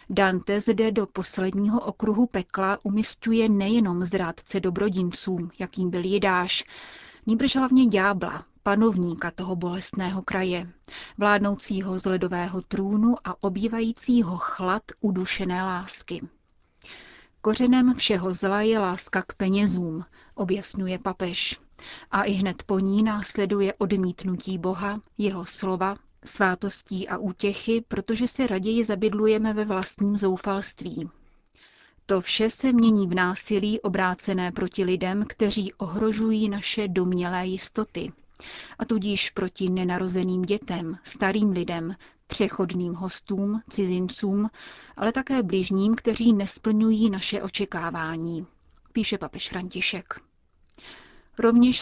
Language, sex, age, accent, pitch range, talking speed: Czech, female, 30-49, native, 185-220 Hz, 110 wpm